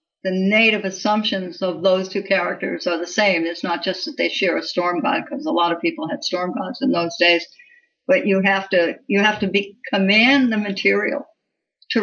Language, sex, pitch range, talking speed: English, female, 185-230 Hz, 210 wpm